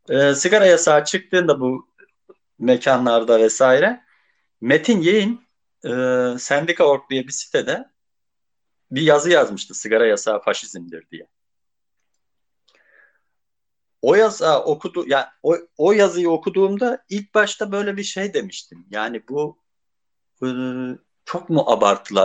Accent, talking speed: native, 110 wpm